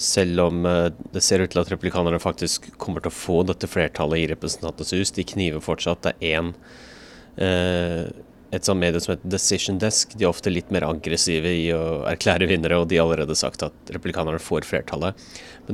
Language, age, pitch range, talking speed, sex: English, 30-49, 85-100 Hz, 180 wpm, male